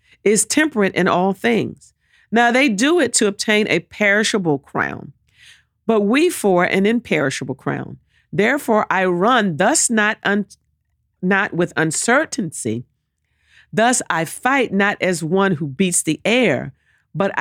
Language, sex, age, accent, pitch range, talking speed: English, female, 50-69, American, 175-245 Hz, 135 wpm